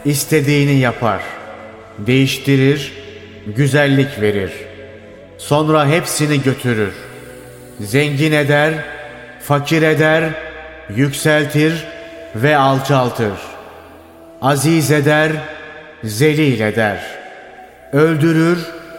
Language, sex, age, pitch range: Turkish, male, 30-49, 130-155 Hz